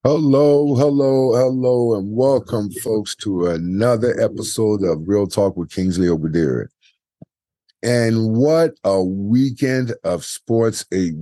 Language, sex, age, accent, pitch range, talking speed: English, male, 50-69, American, 105-145 Hz, 120 wpm